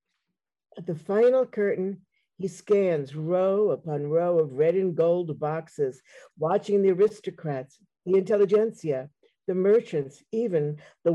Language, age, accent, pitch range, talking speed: English, 50-69, American, 155-200 Hz, 125 wpm